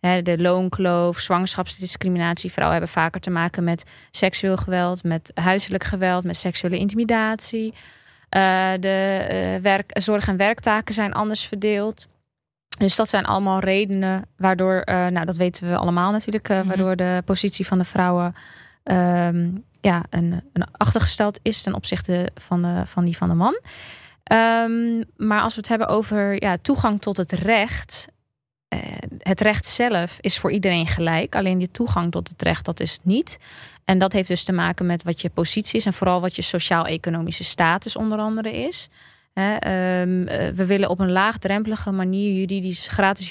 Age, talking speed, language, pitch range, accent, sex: 20-39, 170 wpm, Dutch, 175-205 Hz, Dutch, female